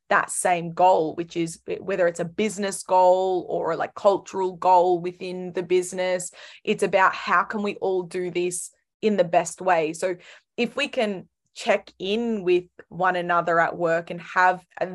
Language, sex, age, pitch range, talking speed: English, female, 20-39, 180-215 Hz, 175 wpm